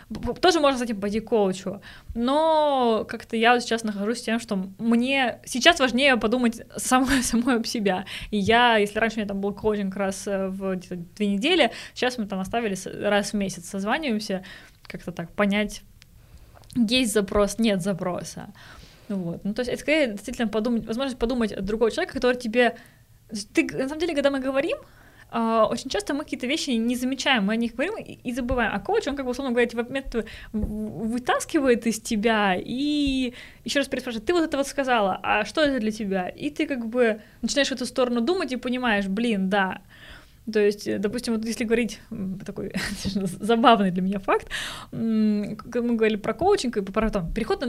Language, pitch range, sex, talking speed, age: Russian, 205-255 Hz, female, 175 wpm, 20-39